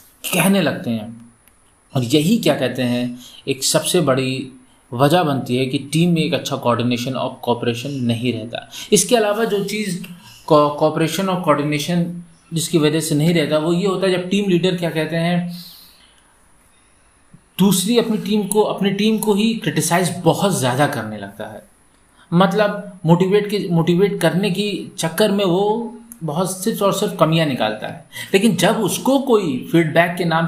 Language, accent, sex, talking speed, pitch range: Hindi, native, male, 165 wpm, 140-195 Hz